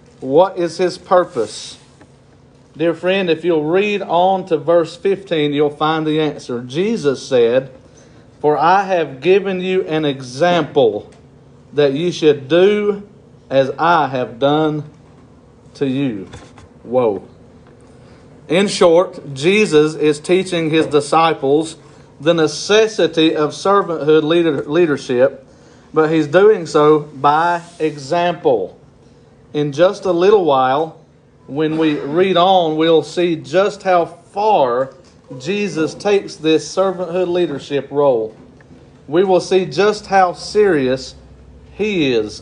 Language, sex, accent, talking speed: English, male, American, 115 wpm